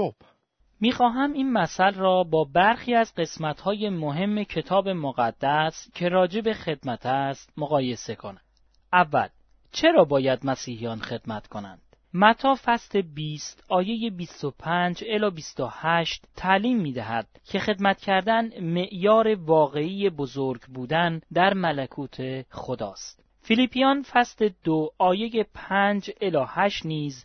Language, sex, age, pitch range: Persian, male, 30-49, 145-210 Hz